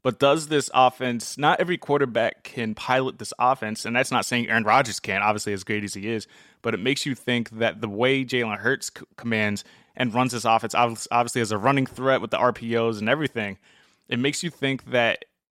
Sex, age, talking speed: male, 20-39, 215 wpm